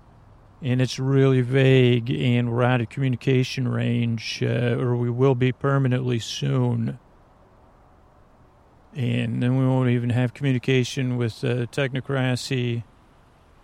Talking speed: 120 wpm